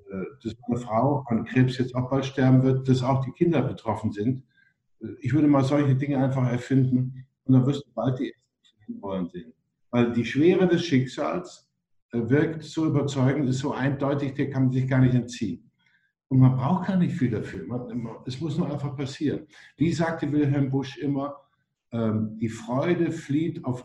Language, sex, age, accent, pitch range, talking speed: German, male, 50-69, German, 115-140 Hz, 175 wpm